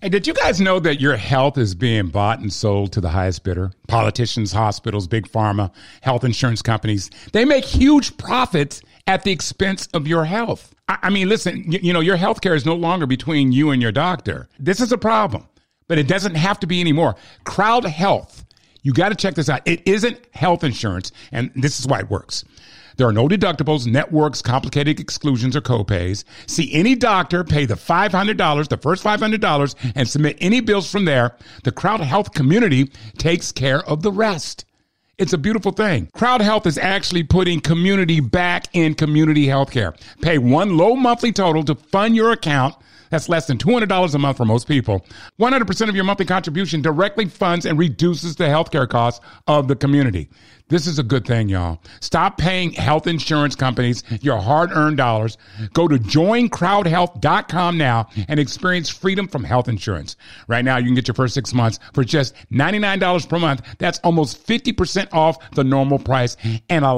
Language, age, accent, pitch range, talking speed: English, 50-69, American, 120-180 Hz, 185 wpm